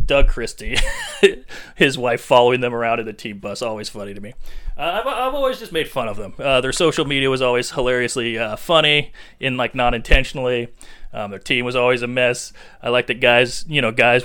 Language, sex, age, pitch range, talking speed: English, male, 30-49, 120-165 Hz, 200 wpm